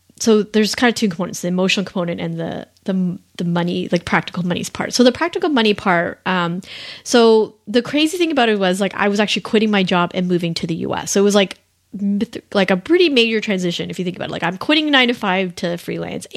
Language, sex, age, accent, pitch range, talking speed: English, female, 30-49, American, 175-220 Hz, 240 wpm